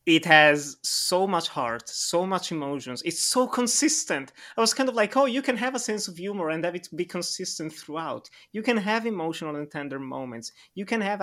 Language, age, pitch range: English, 30-49, 150-205 Hz